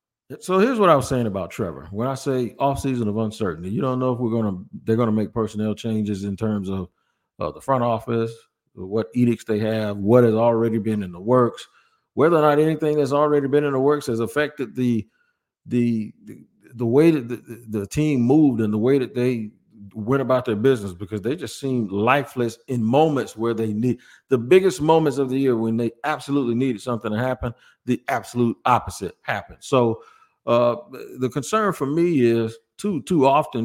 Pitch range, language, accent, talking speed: 115-140 Hz, English, American, 200 wpm